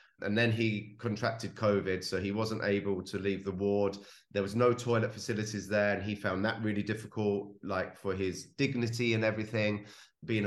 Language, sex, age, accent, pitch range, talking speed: English, male, 30-49, British, 105-135 Hz, 185 wpm